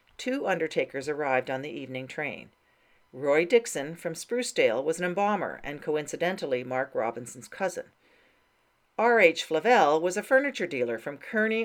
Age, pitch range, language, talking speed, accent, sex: 40-59, 145-230 Hz, English, 140 wpm, American, female